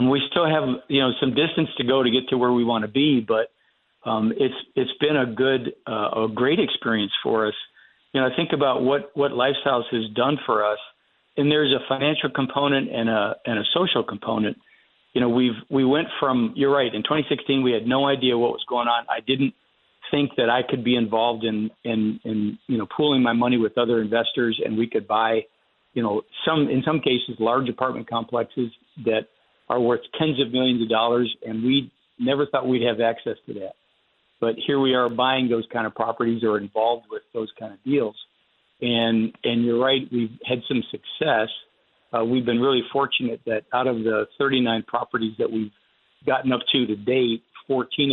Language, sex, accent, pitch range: English, male, American, 115-135 Hz